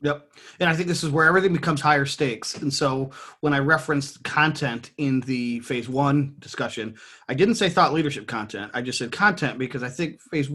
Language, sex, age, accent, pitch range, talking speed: English, male, 30-49, American, 125-155 Hz, 205 wpm